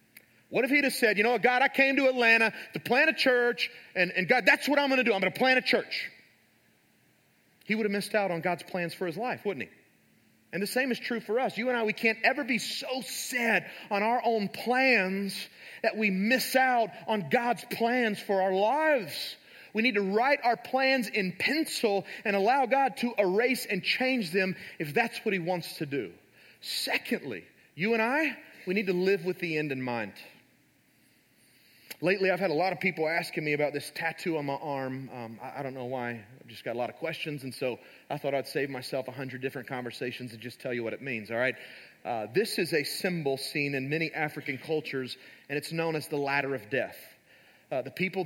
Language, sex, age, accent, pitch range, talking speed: English, male, 30-49, American, 145-225 Hz, 225 wpm